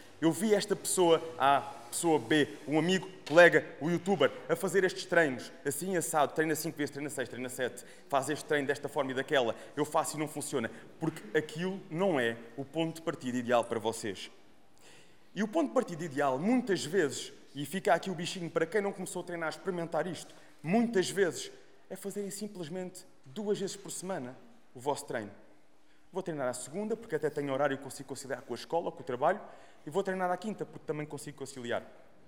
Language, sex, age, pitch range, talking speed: Portuguese, male, 20-39, 145-185 Hz, 200 wpm